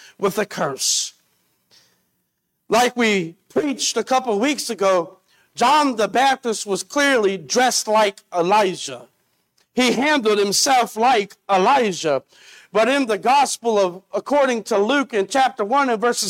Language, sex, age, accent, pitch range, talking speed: English, male, 50-69, American, 210-280 Hz, 135 wpm